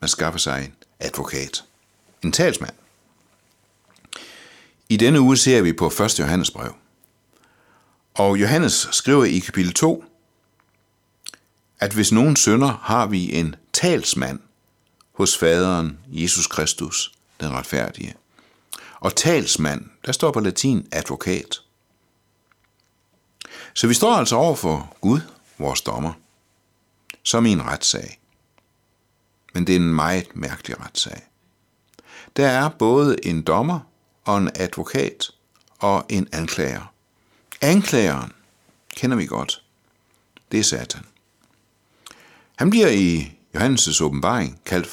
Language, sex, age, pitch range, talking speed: Danish, male, 60-79, 85-110 Hz, 115 wpm